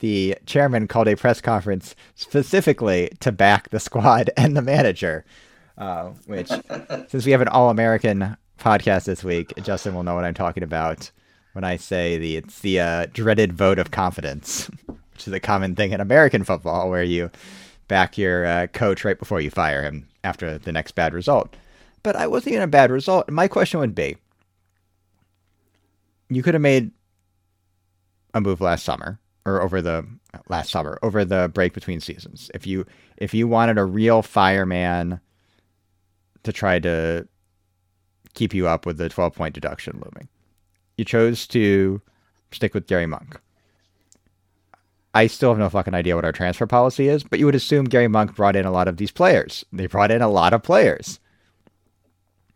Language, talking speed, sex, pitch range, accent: English, 175 wpm, male, 90-110 Hz, American